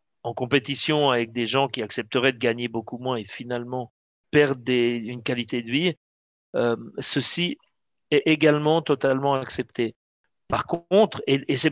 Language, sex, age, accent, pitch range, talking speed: German, male, 40-59, French, 115-135 Hz, 150 wpm